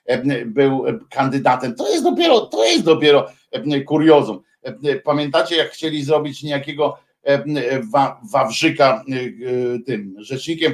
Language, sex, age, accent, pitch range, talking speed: Polish, male, 50-69, native, 140-215 Hz, 95 wpm